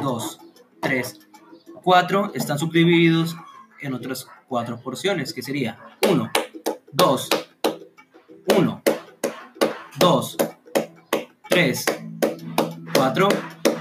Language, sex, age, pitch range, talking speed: Spanish, male, 30-49, 130-180 Hz, 75 wpm